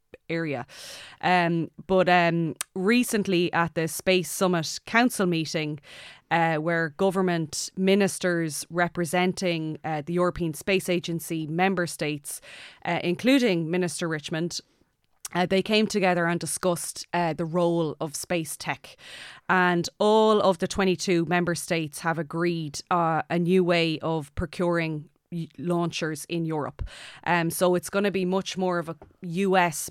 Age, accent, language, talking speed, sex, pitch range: 20-39, Irish, English, 140 wpm, female, 165-180 Hz